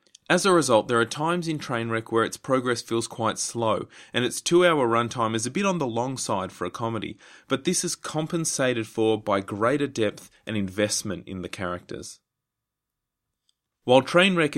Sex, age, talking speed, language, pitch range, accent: male, 30-49, 175 wpm, English, 105-130 Hz, Australian